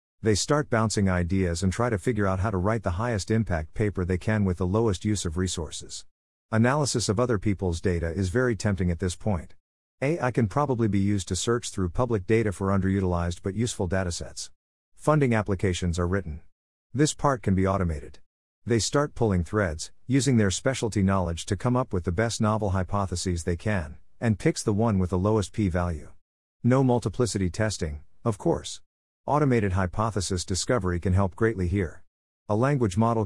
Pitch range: 90-115 Hz